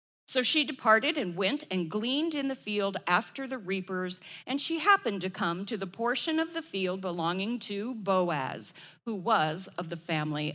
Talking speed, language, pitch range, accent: 180 wpm, English, 180-245 Hz, American